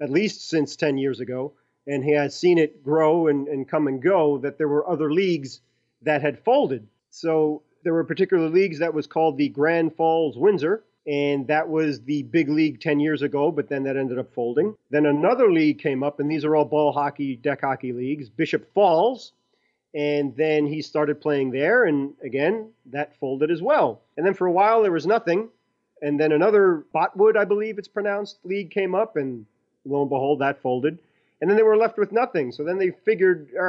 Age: 30-49